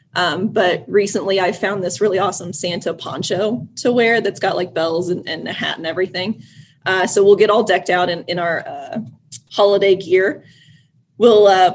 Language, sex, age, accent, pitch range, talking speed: English, female, 30-49, American, 180-210 Hz, 190 wpm